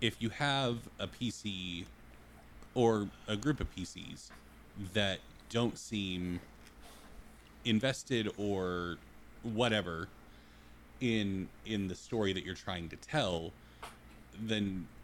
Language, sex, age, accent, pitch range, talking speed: English, male, 30-49, American, 85-110 Hz, 105 wpm